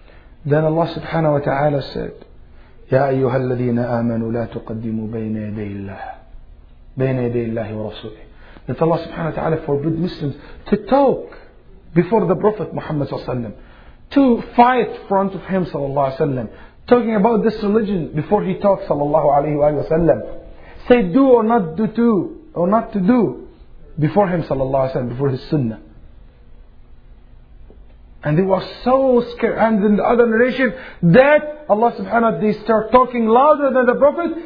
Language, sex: English, male